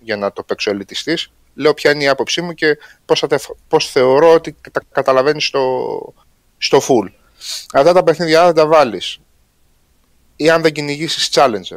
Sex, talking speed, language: male, 165 wpm, Greek